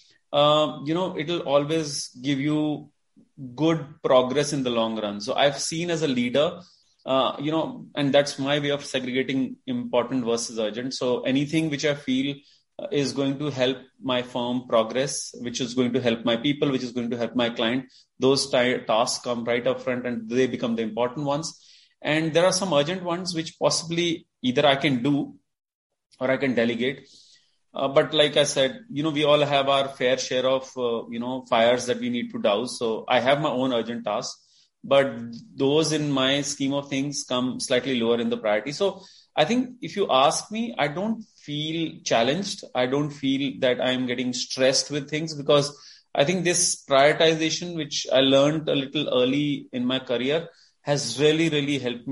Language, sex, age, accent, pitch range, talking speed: English, male, 30-49, Indian, 125-155 Hz, 190 wpm